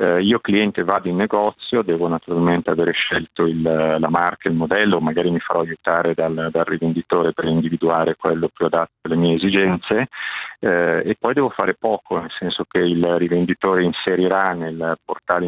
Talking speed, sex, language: 165 wpm, male, Italian